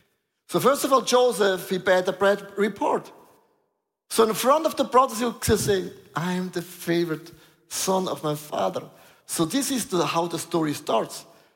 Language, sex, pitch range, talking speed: German, male, 190-245 Hz, 180 wpm